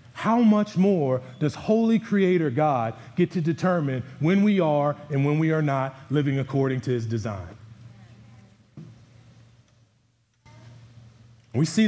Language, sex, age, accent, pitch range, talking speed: English, male, 40-59, American, 120-160 Hz, 125 wpm